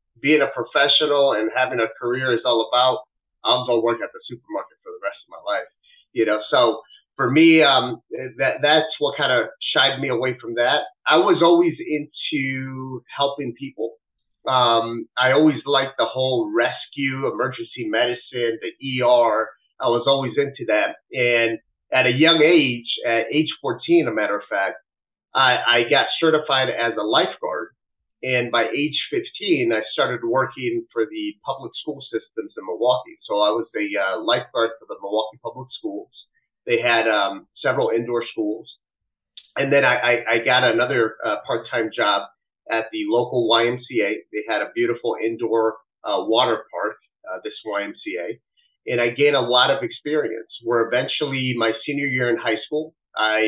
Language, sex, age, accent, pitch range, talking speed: English, male, 30-49, American, 115-155 Hz, 170 wpm